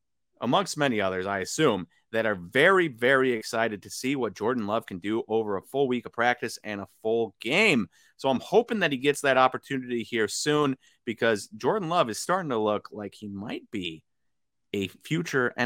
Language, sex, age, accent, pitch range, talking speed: English, male, 30-49, American, 105-145 Hz, 190 wpm